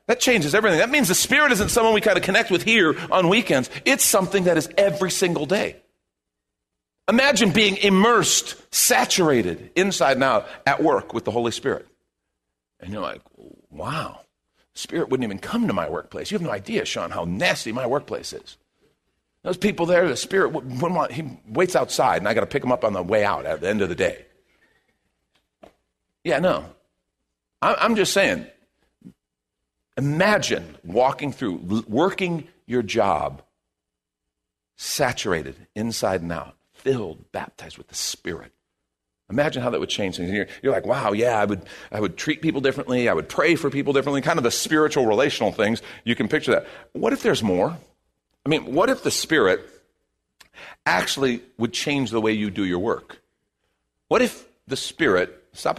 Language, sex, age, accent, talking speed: English, male, 50-69, American, 175 wpm